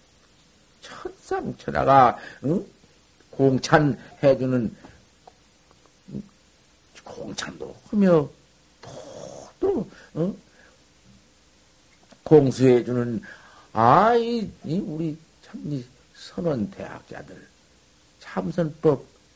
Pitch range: 135-185 Hz